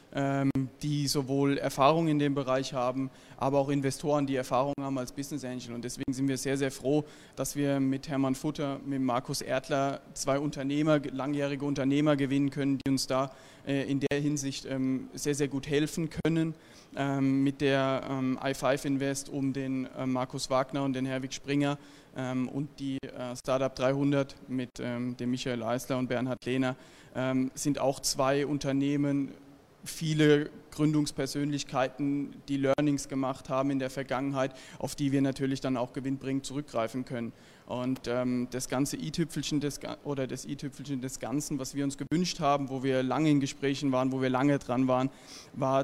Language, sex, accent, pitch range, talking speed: German, male, German, 130-145 Hz, 160 wpm